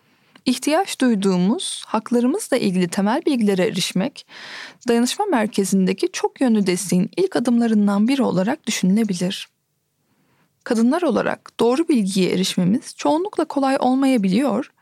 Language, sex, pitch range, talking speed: Turkish, female, 200-285 Hz, 100 wpm